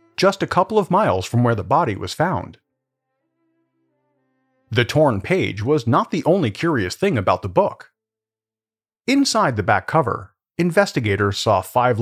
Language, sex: English, male